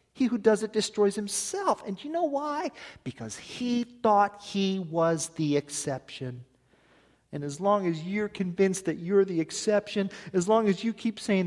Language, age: English, 40-59